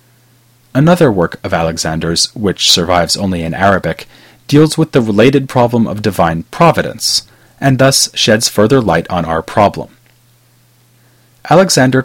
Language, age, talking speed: English, 30-49, 130 wpm